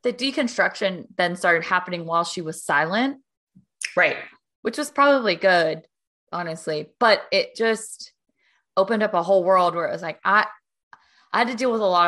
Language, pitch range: English, 180-245 Hz